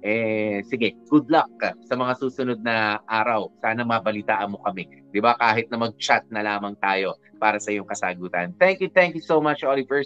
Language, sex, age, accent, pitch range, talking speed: Filipino, male, 20-39, native, 120-155 Hz, 190 wpm